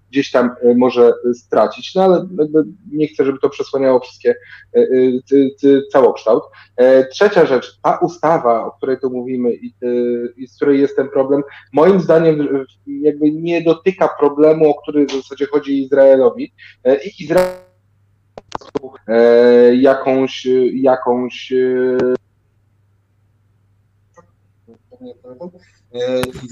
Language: Polish